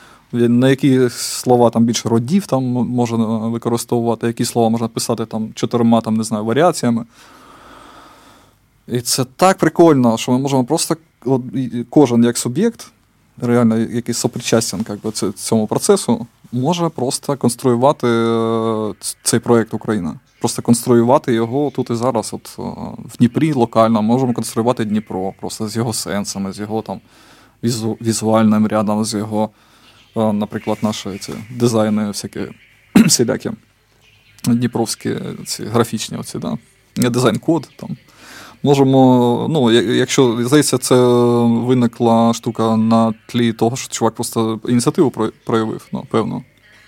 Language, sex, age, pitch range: Ukrainian, male, 20-39, 110-130 Hz